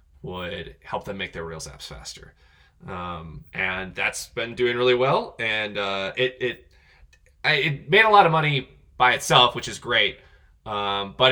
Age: 20-39